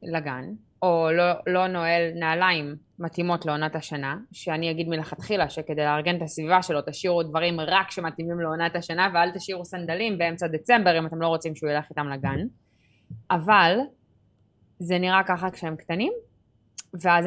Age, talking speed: 20-39, 150 wpm